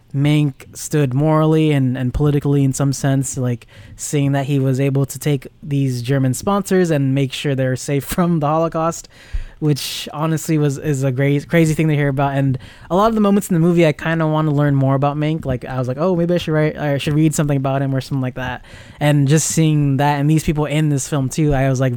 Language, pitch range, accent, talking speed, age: English, 135-160 Hz, American, 250 wpm, 20-39